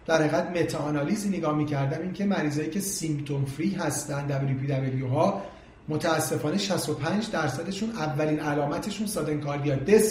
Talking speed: 125 wpm